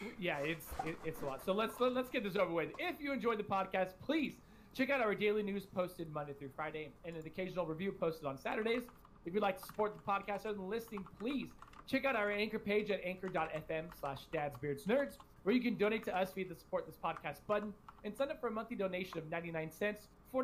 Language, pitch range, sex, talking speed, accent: English, 155-210 Hz, male, 225 wpm, American